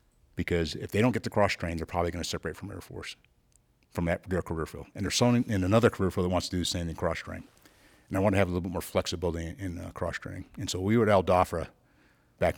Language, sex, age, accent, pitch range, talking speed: English, male, 50-69, American, 85-100 Hz, 260 wpm